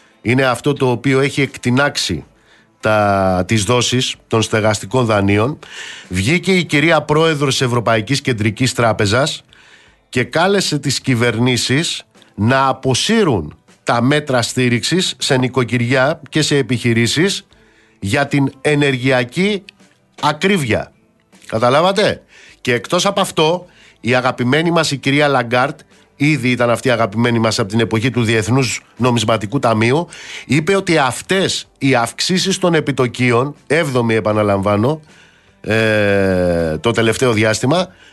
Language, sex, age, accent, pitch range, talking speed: Greek, male, 50-69, native, 110-145 Hz, 115 wpm